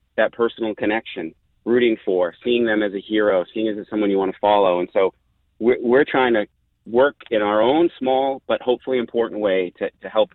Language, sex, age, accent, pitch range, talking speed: English, male, 30-49, American, 95-110 Hz, 205 wpm